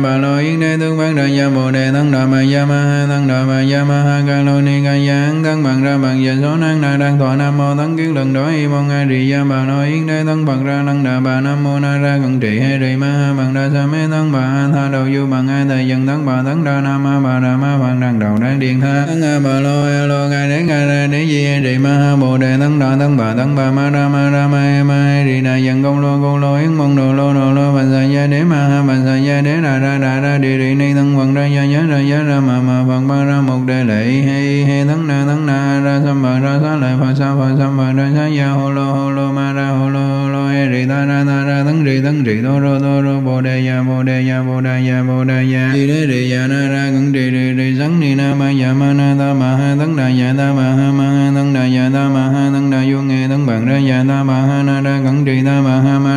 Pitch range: 130-140 Hz